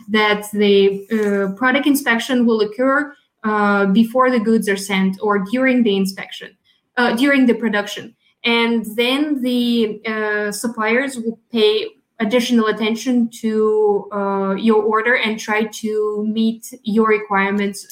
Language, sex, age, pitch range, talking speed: English, female, 20-39, 215-250 Hz, 135 wpm